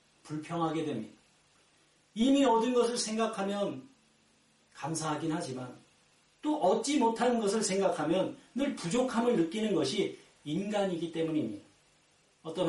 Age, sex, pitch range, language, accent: 40-59, male, 155-220 Hz, Korean, native